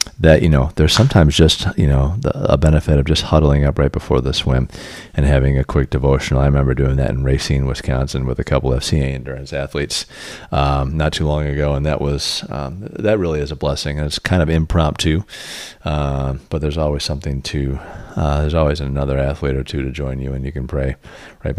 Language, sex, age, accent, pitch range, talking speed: English, male, 40-59, American, 70-85 Hz, 215 wpm